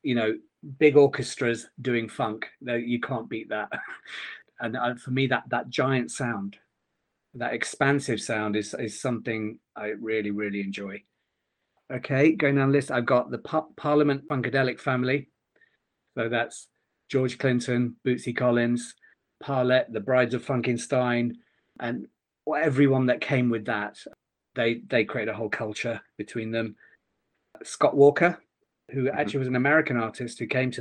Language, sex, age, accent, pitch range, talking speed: English, male, 40-59, British, 115-135 Hz, 150 wpm